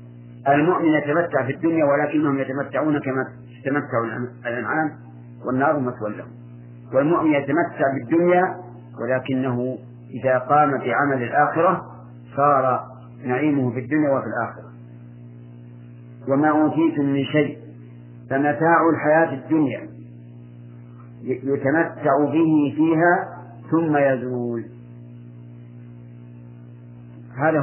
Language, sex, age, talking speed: English, male, 50-69, 85 wpm